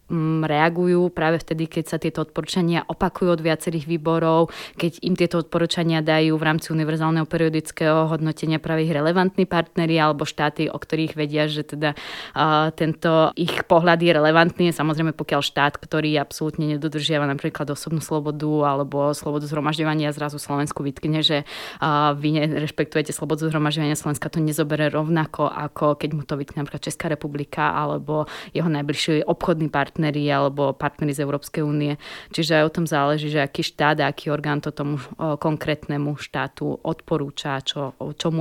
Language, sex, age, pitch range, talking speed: Slovak, female, 20-39, 145-160 Hz, 155 wpm